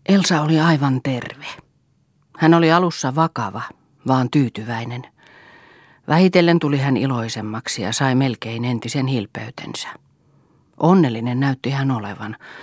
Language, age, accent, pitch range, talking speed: Finnish, 40-59, native, 120-145 Hz, 110 wpm